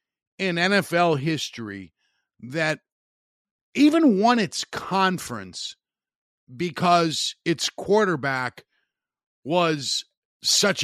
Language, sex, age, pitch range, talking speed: English, male, 50-69, 120-160 Hz, 70 wpm